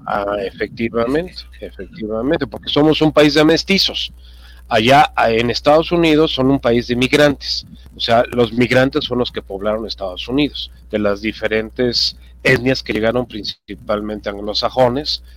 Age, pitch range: 40-59, 105-145 Hz